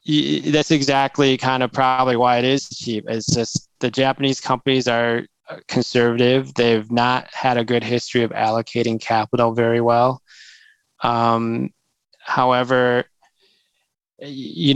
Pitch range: 115-130 Hz